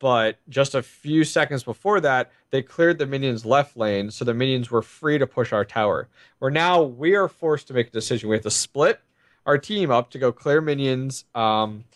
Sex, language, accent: male, English, American